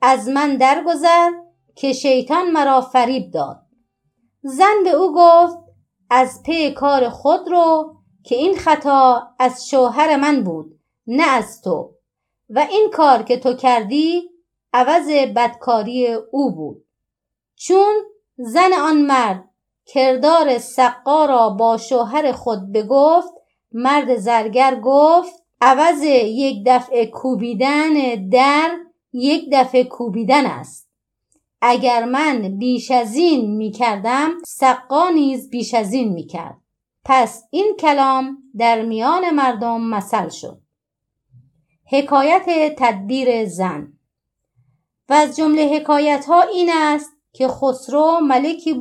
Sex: female